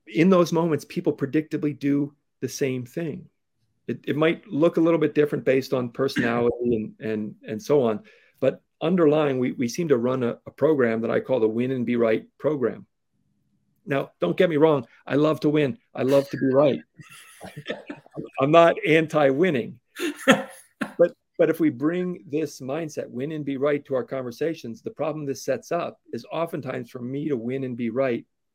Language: English